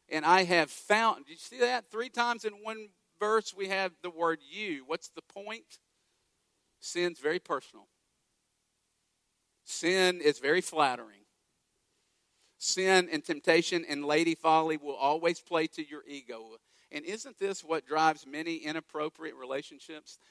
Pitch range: 145-175 Hz